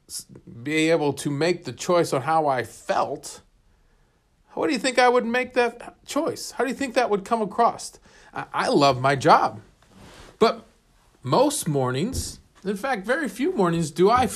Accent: American